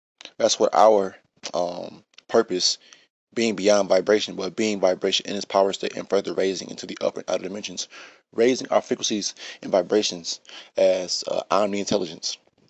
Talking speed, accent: 150 wpm, American